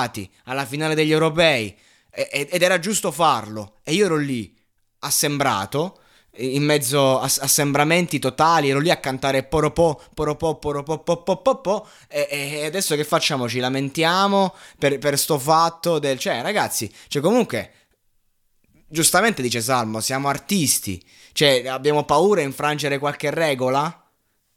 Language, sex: Italian, male